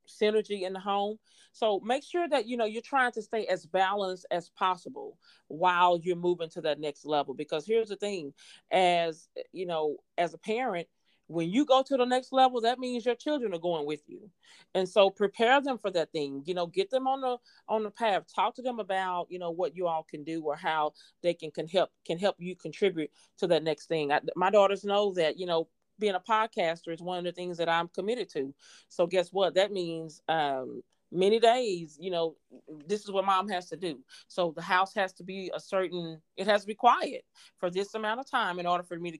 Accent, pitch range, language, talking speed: American, 175-225 Hz, English, 230 wpm